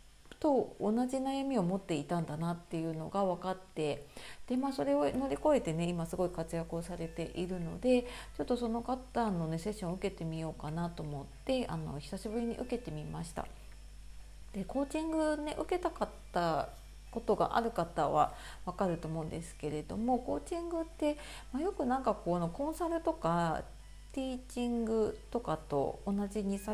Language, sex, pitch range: Japanese, female, 165-250 Hz